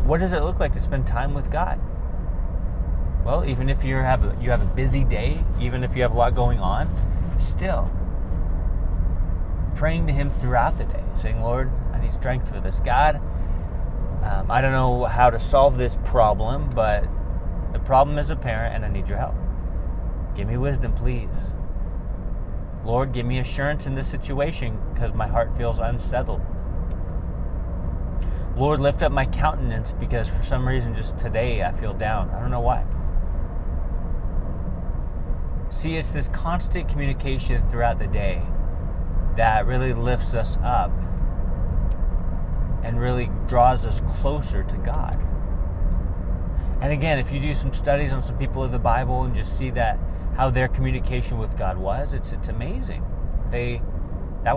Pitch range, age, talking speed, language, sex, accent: 80-120 Hz, 30-49, 155 wpm, English, male, American